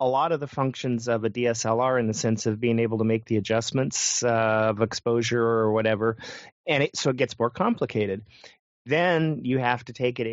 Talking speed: 205 wpm